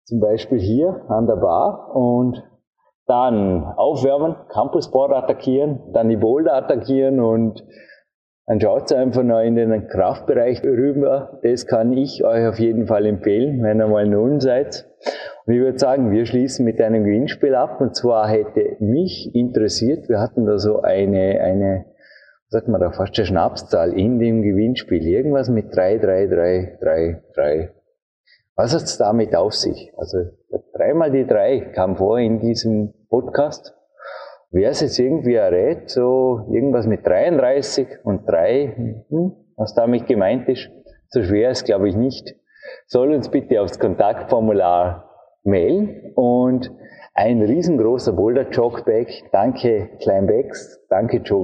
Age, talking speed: 30-49, 145 wpm